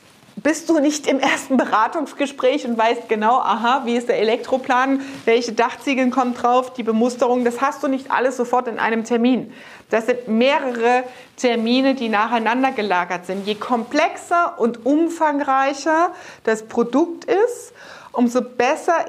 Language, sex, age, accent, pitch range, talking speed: German, female, 40-59, German, 235-285 Hz, 145 wpm